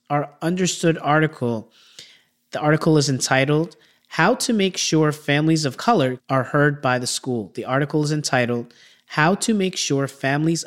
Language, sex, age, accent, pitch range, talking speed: English, male, 30-49, American, 125-155 Hz, 160 wpm